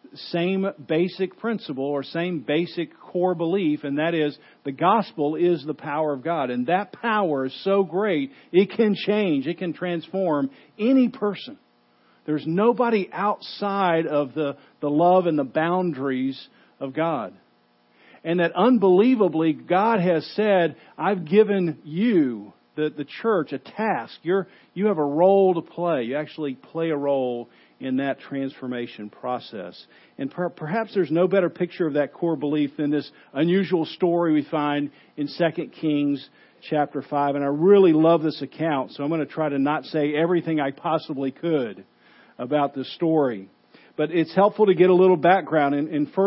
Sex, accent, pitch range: male, American, 145-185 Hz